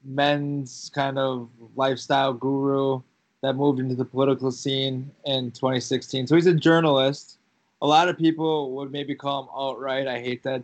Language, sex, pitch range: English, male, 130-145 Hz